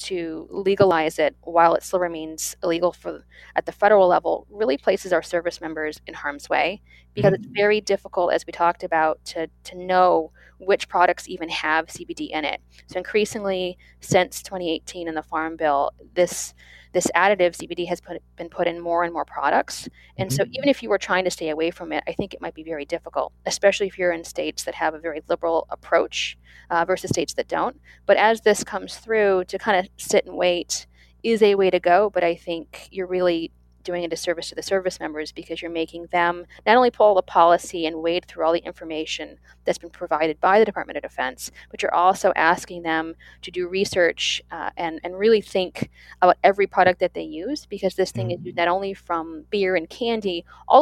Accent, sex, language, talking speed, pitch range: American, female, English, 205 wpm, 160-190 Hz